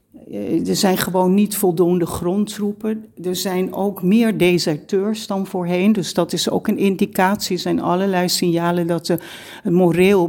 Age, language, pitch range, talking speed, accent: 60-79, Dutch, 155-180 Hz, 150 wpm, Dutch